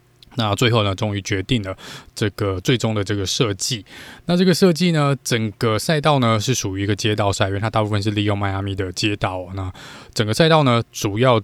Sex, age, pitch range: male, 20-39, 105-135 Hz